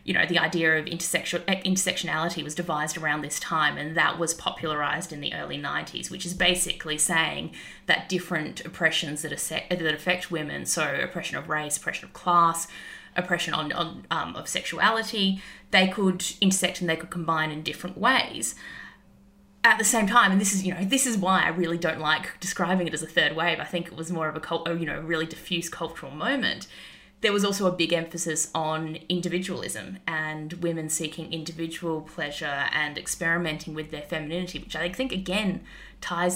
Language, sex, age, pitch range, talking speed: English, female, 20-39, 160-185 Hz, 180 wpm